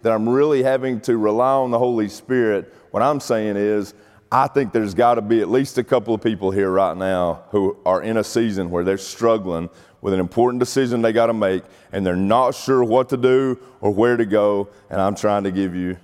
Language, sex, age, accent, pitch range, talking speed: English, male, 30-49, American, 90-110 Hz, 230 wpm